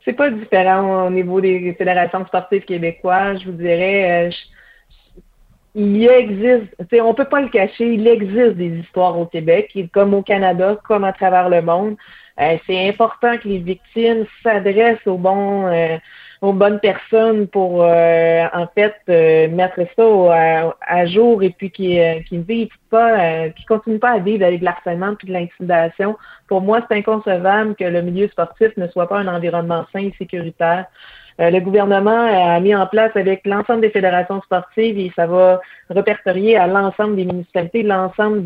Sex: female